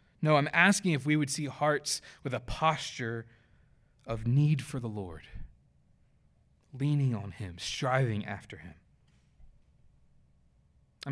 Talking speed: 125 wpm